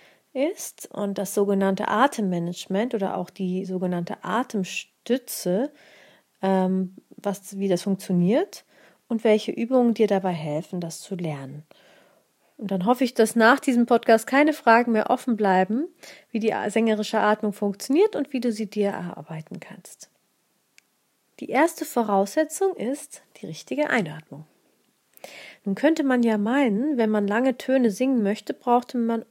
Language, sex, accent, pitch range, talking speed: German, female, German, 200-265 Hz, 135 wpm